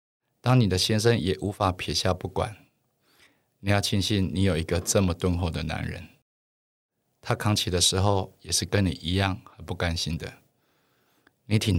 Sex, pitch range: male, 90-110 Hz